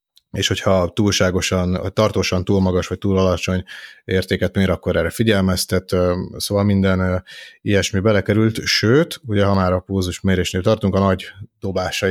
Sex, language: male, Hungarian